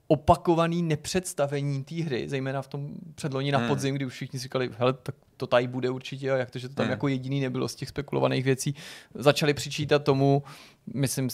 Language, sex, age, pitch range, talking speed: Czech, male, 20-39, 130-150 Hz, 190 wpm